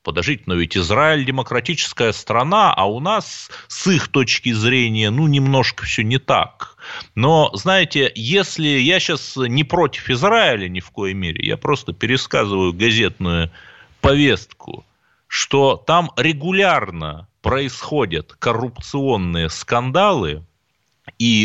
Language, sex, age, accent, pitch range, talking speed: Russian, male, 30-49, native, 95-140 Hz, 120 wpm